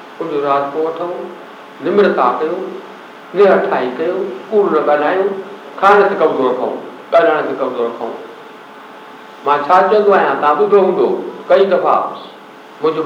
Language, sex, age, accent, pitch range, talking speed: Hindi, male, 60-79, native, 170-205 Hz, 95 wpm